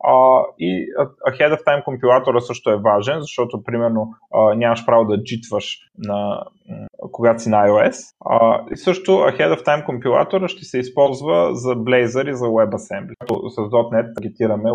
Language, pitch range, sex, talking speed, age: Bulgarian, 110-145 Hz, male, 165 wpm, 30-49